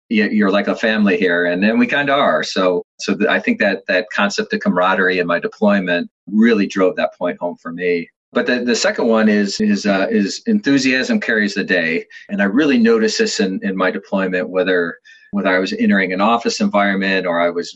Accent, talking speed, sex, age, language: American, 215 wpm, male, 40-59, English